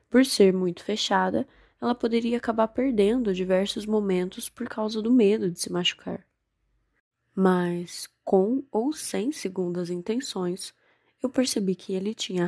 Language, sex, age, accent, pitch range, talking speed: Portuguese, female, 10-29, Brazilian, 185-215 Hz, 135 wpm